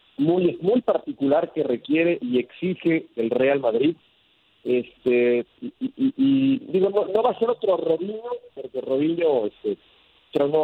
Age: 40-59